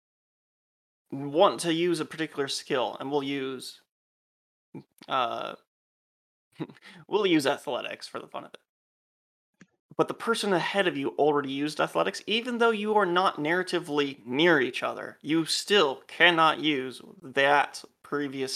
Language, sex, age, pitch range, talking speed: English, male, 30-49, 130-170 Hz, 135 wpm